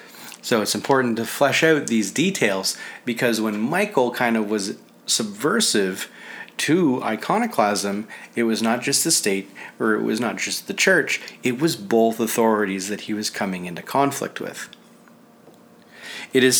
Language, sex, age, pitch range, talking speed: English, male, 40-59, 105-120 Hz, 155 wpm